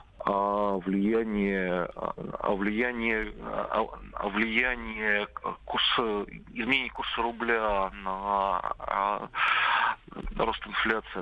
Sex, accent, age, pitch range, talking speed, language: male, native, 40-59, 100-120 Hz, 65 wpm, Russian